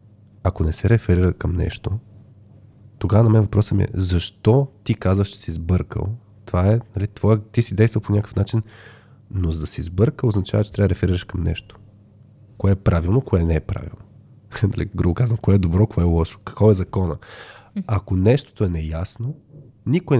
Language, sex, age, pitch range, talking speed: Bulgarian, male, 20-39, 95-115 Hz, 185 wpm